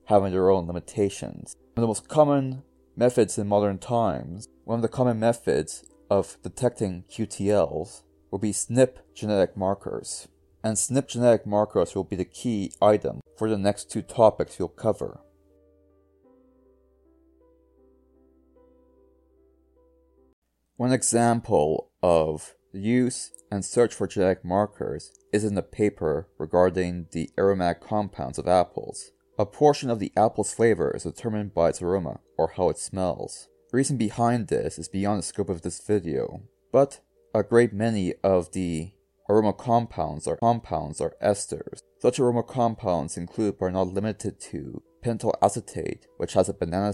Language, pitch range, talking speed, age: English, 80-115 Hz, 145 wpm, 30-49